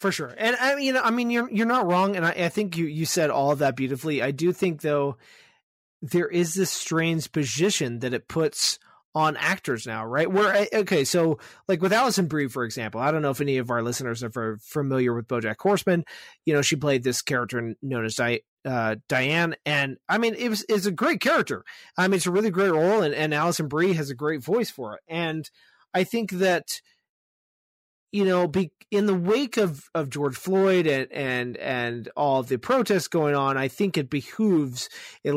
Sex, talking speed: male, 215 wpm